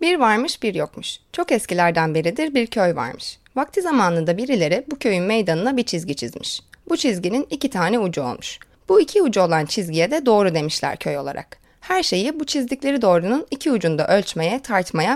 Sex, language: female, Turkish